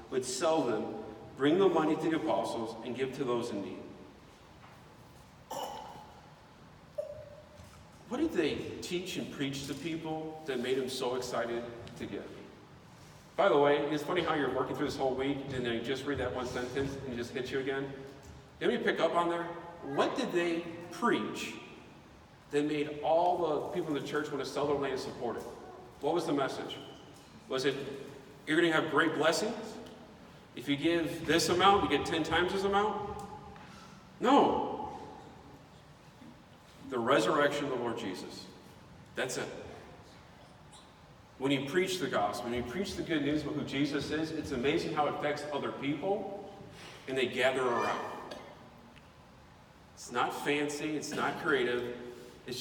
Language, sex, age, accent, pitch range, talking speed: English, male, 40-59, American, 135-170 Hz, 165 wpm